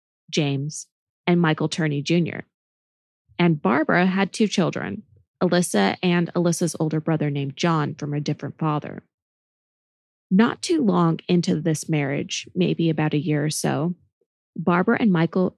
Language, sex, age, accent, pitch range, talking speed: English, female, 20-39, American, 165-195 Hz, 140 wpm